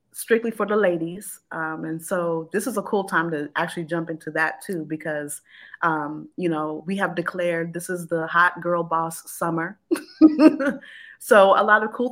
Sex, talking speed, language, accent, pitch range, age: female, 185 wpm, English, American, 160-180 Hz, 30-49